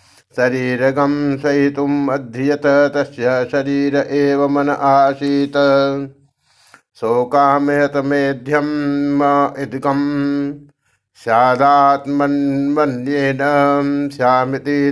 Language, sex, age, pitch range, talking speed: Hindi, male, 60-79, 140-145 Hz, 45 wpm